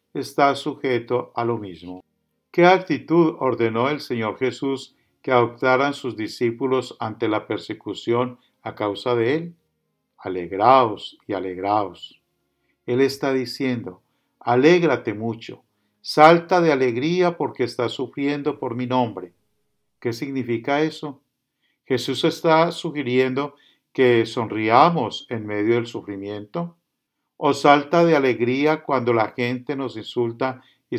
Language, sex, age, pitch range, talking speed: English, male, 50-69, 115-145 Hz, 120 wpm